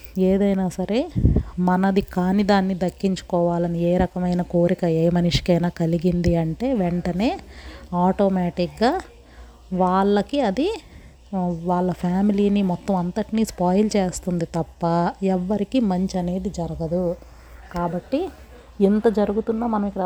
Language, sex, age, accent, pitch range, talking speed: Telugu, female, 30-49, native, 175-200 Hz, 100 wpm